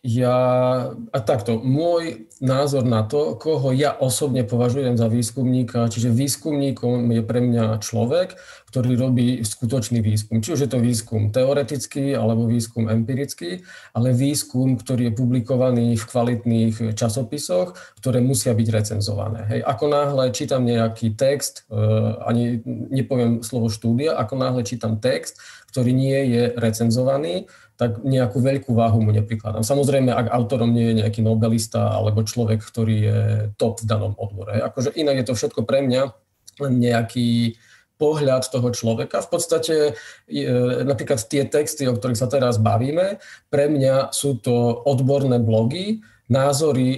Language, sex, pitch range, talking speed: Slovak, male, 115-135 Hz, 140 wpm